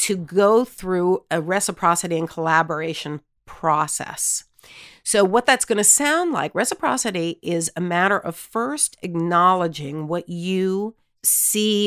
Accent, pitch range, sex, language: American, 160-190 Hz, female, English